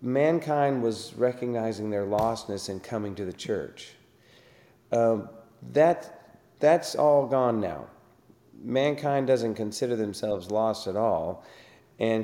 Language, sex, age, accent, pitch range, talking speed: English, male, 40-59, American, 100-125 Hz, 120 wpm